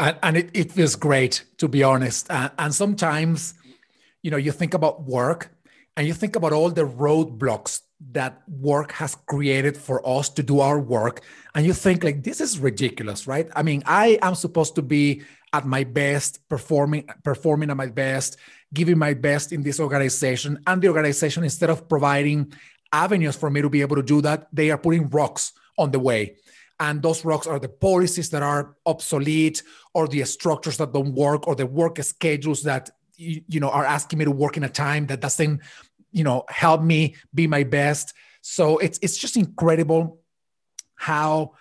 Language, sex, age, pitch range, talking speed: English, male, 30-49, 145-165 Hz, 190 wpm